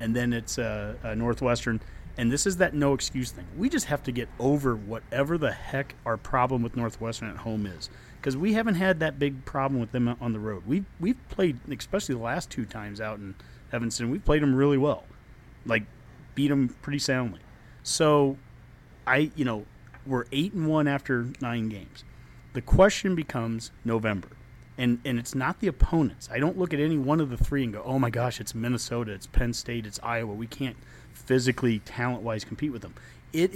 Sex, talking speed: male, 200 wpm